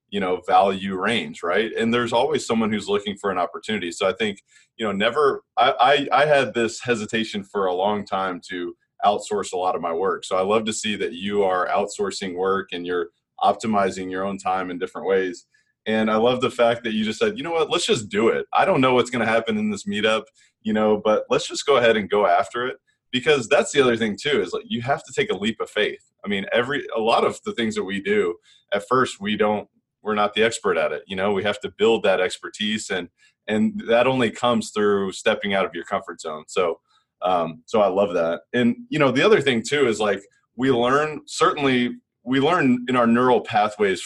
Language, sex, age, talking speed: English, male, 20-39, 235 wpm